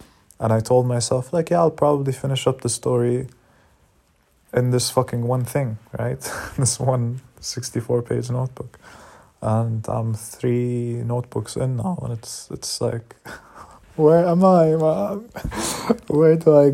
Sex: male